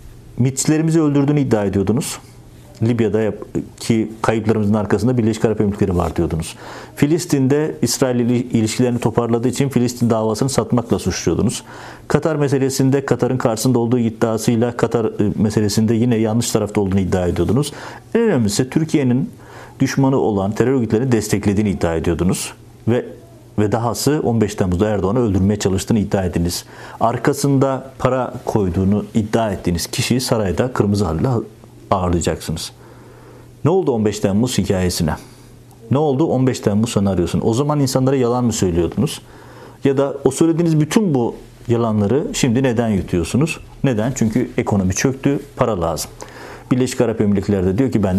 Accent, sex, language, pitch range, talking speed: native, male, Turkish, 105-130 Hz, 130 wpm